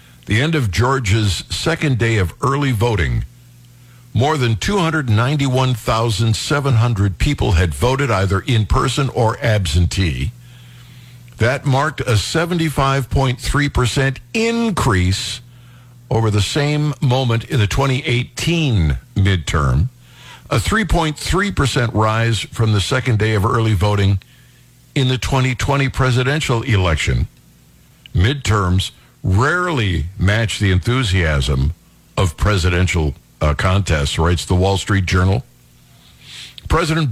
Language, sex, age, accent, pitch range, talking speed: English, male, 60-79, American, 100-135 Hz, 100 wpm